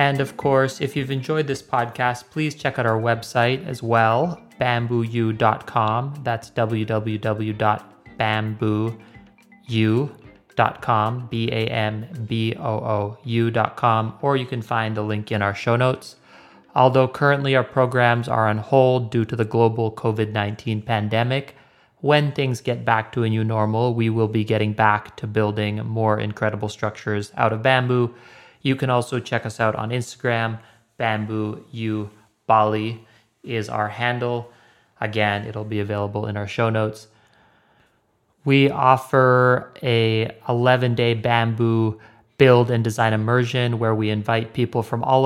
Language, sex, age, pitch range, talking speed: English, male, 30-49, 110-125 Hz, 130 wpm